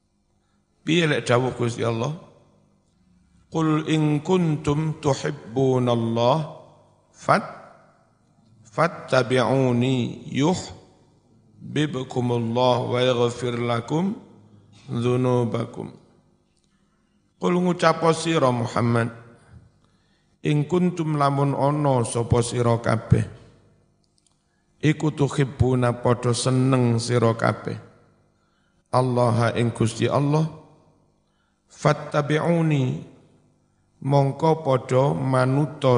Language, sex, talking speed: Indonesian, male, 70 wpm